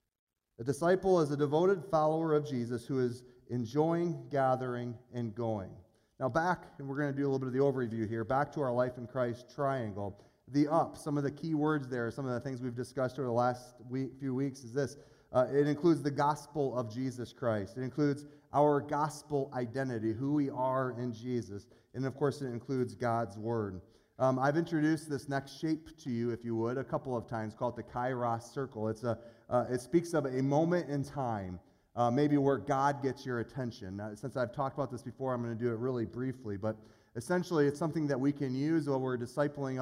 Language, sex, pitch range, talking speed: English, male, 120-145 Hz, 215 wpm